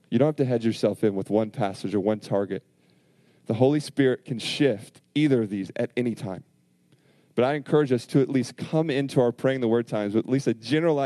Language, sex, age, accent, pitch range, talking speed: English, male, 30-49, American, 110-140 Hz, 235 wpm